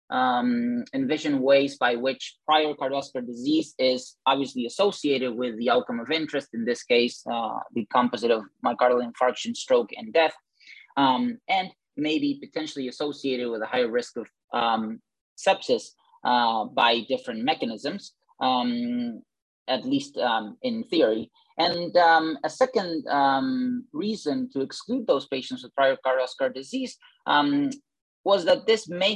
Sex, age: male, 20-39